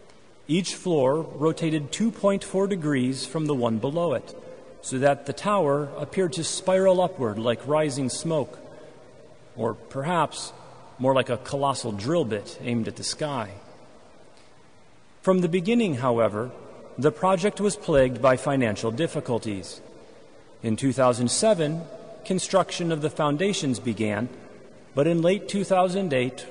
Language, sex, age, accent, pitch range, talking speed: English, male, 40-59, American, 125-175 Hz, 125 wpm